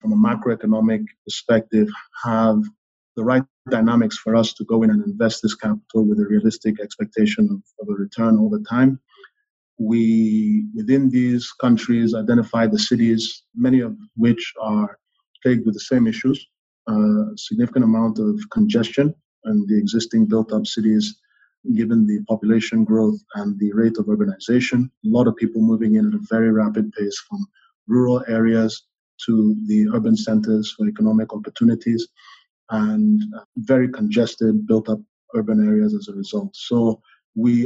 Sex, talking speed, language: male, 150 wpm, English